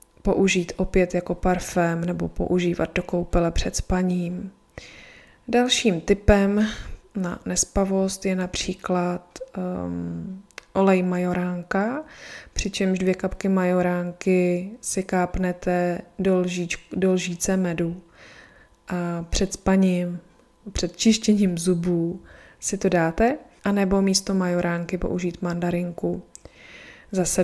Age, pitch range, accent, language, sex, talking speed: 20-39, 175-190 Hz, native, Czech, female, 100 wpm